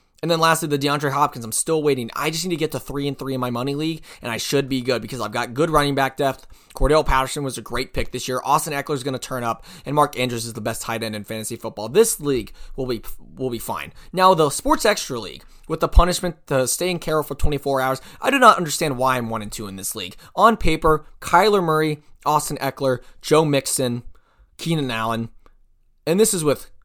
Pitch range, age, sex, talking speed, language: 120-165 Hz, 20-39, male, 240 wpm, English